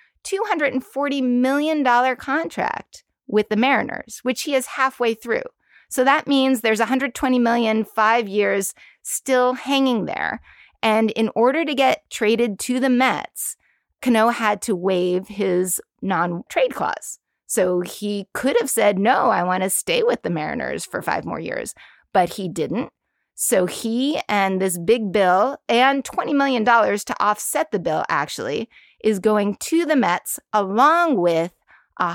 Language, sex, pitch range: English, female, 195-265 Hz